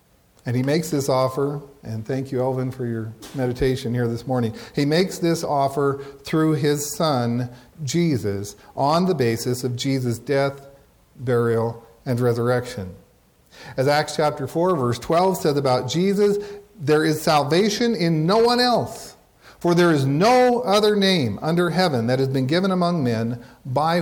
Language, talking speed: English, 155 wpm